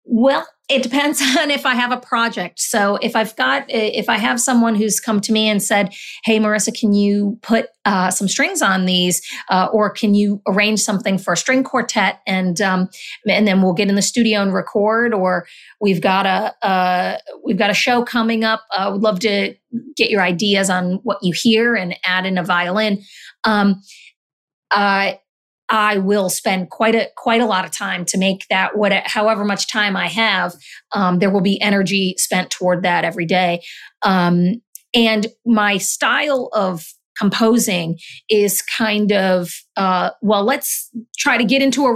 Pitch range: 195-235 Hz